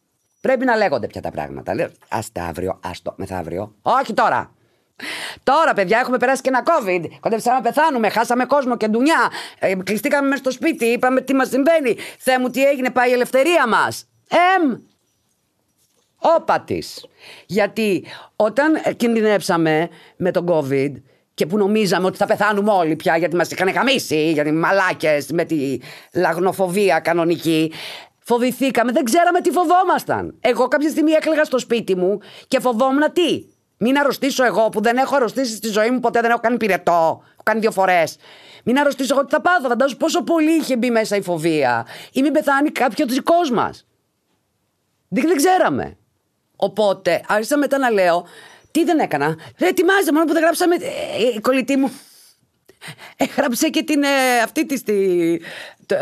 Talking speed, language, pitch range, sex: 165 wpm, Greek, 185-285 Hz, female